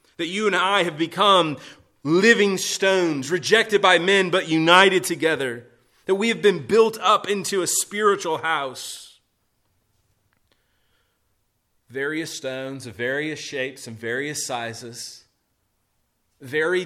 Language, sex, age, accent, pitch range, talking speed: English, male, 30-49, American, 105-155 Hz, 120 wpm